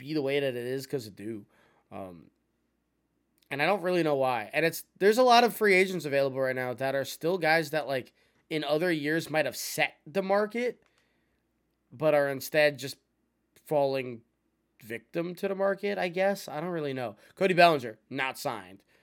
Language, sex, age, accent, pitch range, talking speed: English, male, 20-39, American, 130-185 Hz, 190 wpm